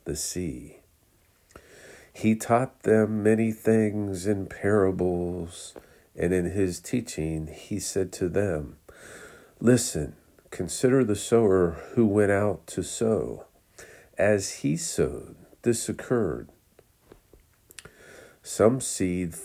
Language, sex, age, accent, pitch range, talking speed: English, male, 50-69, American, 85-110 Hz, 100 wpm